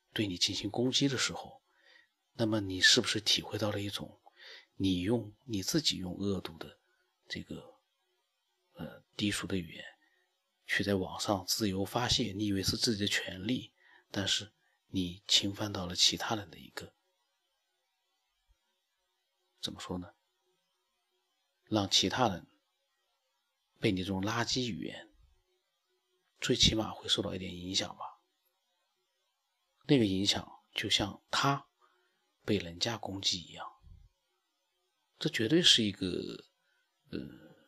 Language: Chinese